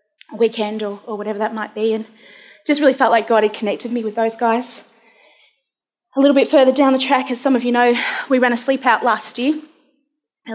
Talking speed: 230 wpm